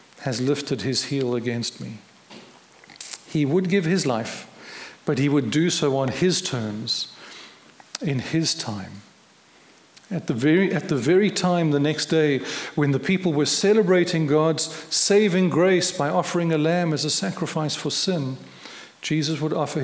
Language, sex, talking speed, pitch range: English, male, 150 wpm, 135-170 Hz